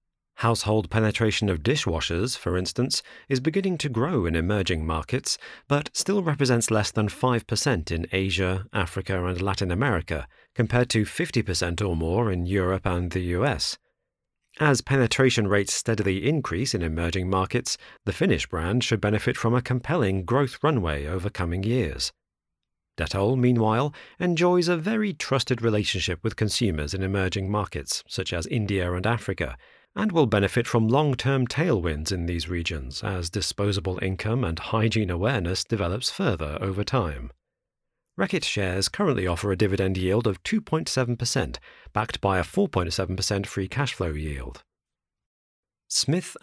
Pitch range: 90-125 Hz